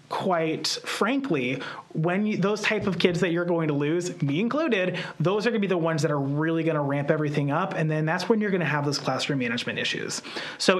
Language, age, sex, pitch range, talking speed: English, 30-49, male, 155-190 Hz, 235 wpm